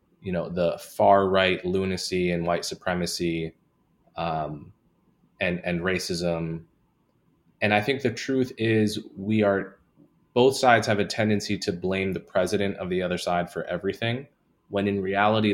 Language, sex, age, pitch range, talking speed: English, male, 20-39, 85-105 Hz, 150 wpm